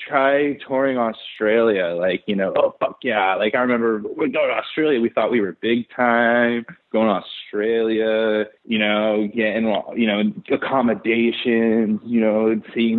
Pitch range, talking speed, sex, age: 105-130 Hz, 155 wpm, male, 20-39